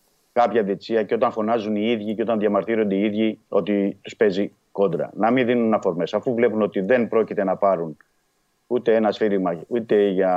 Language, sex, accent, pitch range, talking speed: Greek, male, native, 100-125 Hz, 185 wpm